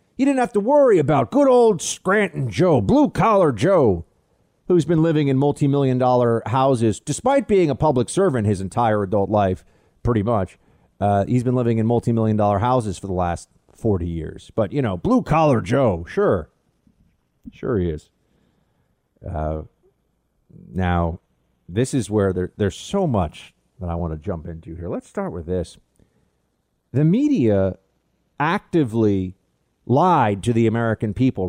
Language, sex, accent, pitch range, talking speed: English, male, American, 100-155 Hz, 150 wpm